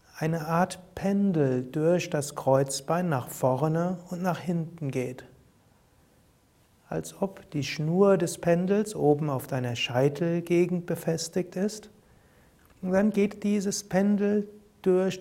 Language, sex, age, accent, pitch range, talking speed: German, male, 60-79, German, 130-175 Hz, 120 wpm